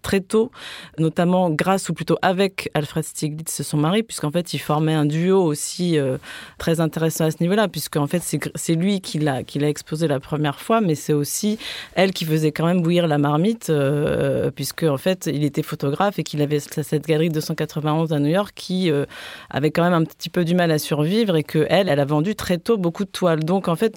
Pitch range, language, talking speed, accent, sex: 155-185 Hz, French, 220 wpm, French, female